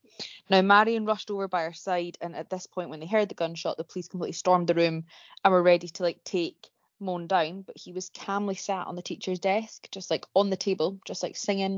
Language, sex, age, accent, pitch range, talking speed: English, female, 20-39, British, 175-205 Hz, 240 wpm